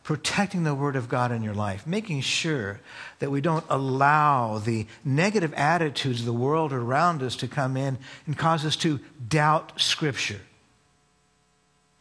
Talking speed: 155 wpm